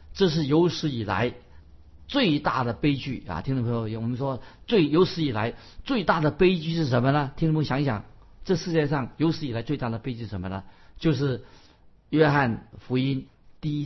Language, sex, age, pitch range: Chinese, male, 50-69, 105-145 Hz